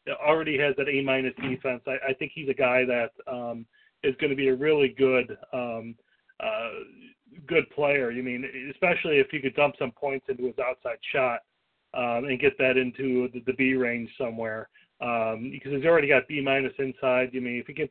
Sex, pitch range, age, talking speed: male, 125-155 Hz, 40-59, 210 wpm